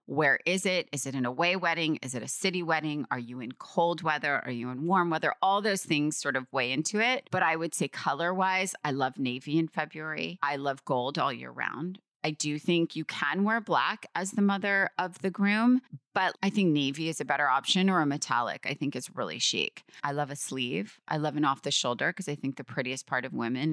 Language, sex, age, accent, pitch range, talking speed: English, female, 30-49, American, 140-175 Hz, 240 wpm